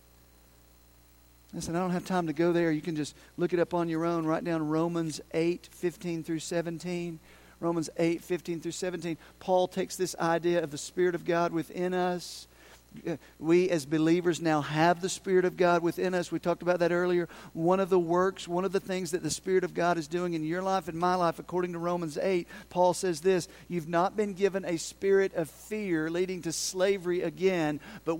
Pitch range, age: 125-170 Hz, 50-69